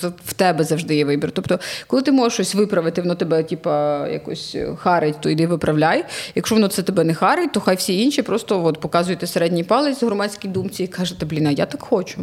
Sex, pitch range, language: female, 175-235 Hz, Ukrainian